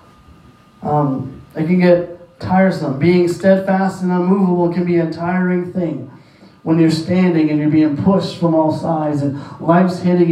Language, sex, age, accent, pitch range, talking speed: English, male, 30-49, American, 155-180 Hz, 175 wpm